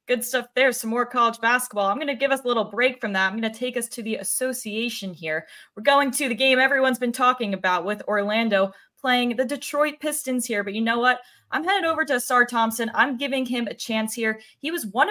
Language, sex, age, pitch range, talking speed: English, female, 20-39, 200-250 Hz, 240 wpm